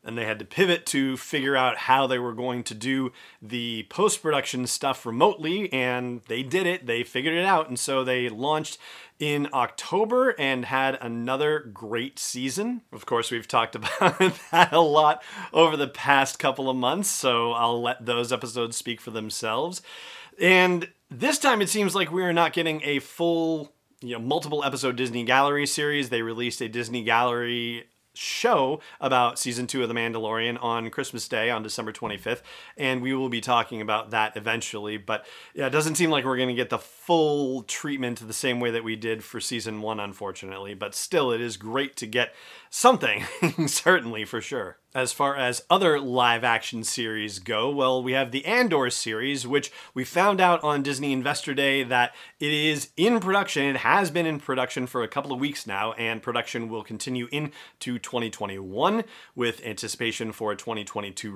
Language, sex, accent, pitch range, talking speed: English, male, American, 115-150 Hz, 180 wpm